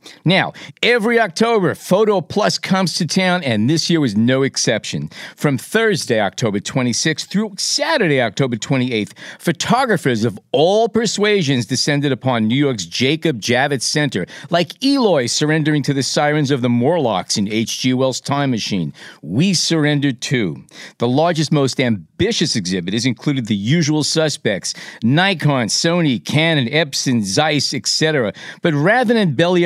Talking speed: 140 wpm